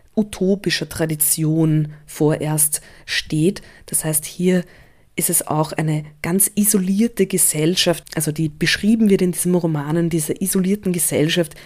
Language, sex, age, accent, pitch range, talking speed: English, female, 20-39, German, 155-175 Hz, 125 wpm